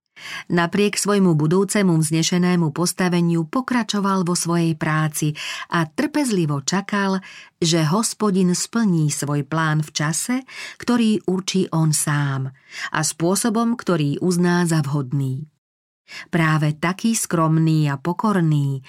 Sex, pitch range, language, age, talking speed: female, 150-185 Hz, Slovak, 40-59, 110 wpm